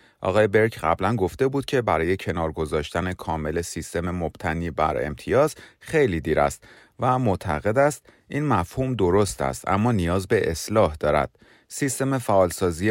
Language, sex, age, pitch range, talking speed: Persian, male, 30-49, 85-125 Hz, 140 wpm